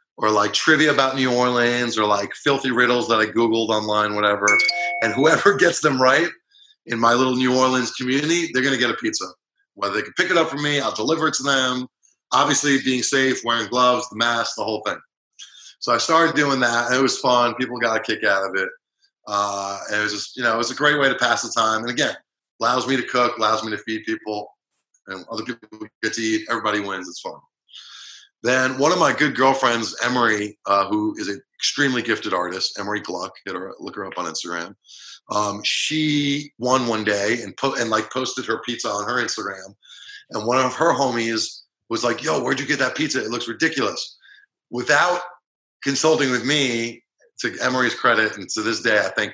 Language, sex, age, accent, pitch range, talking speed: English, male, 30-49, American, 115-150 Hz, 215 wpm